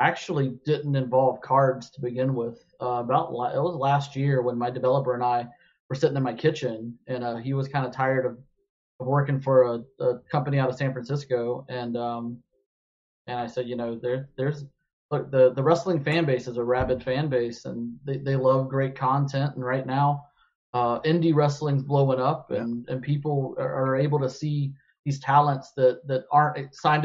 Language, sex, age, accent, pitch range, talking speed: English, male, 30-49, American, 125-145 Hz, 195 wpm